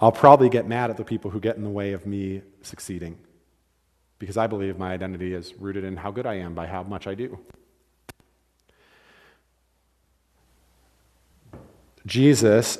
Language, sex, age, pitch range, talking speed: English, male, 40-59, 90-115 Hz, 155 wpm